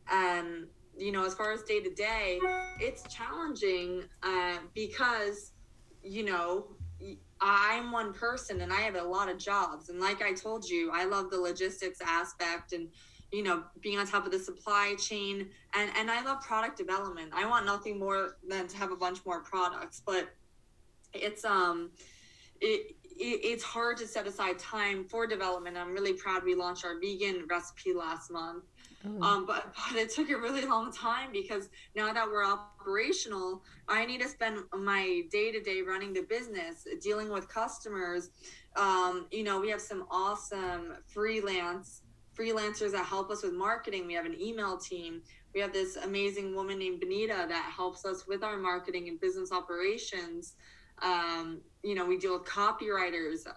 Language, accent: English, American